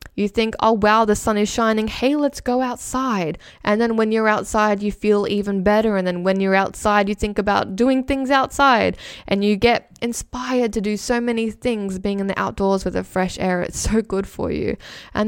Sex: female